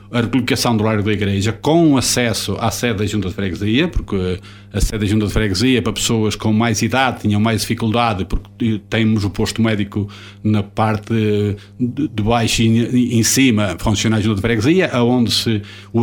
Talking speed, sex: 185 wpm, male